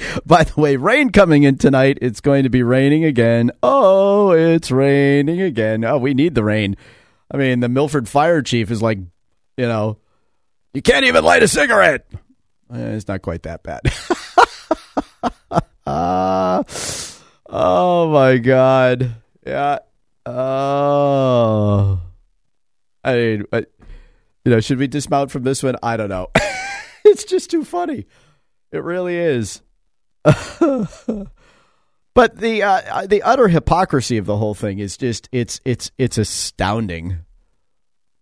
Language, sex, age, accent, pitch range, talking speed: English, male, 40-59, American, 110-140 Hz, 135 wpm